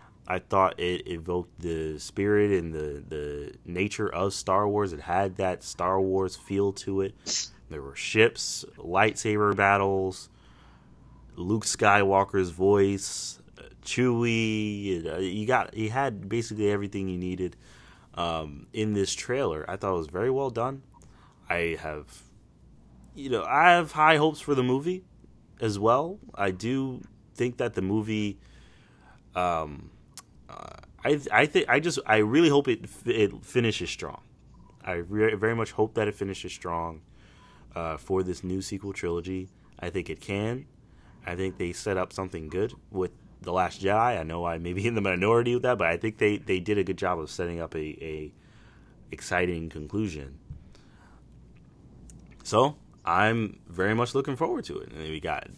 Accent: American